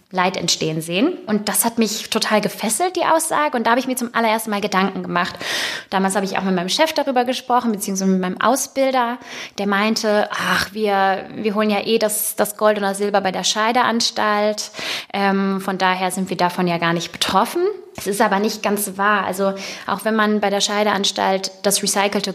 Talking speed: 200 wpm